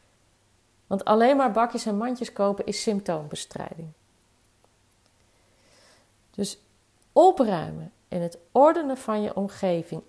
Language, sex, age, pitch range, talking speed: Dutch, female, 40-59, 155-230 Hz, 100 wpm